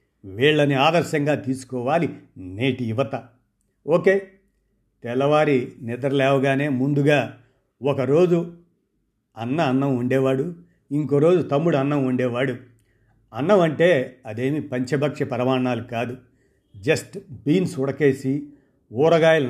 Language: Telugu